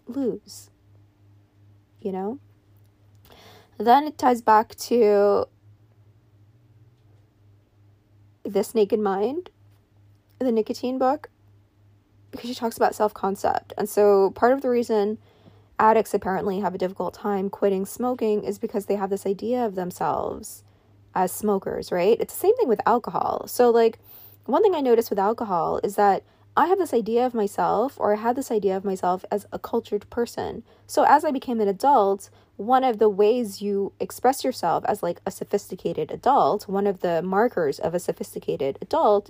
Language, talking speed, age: English, 155 wpm, 20-39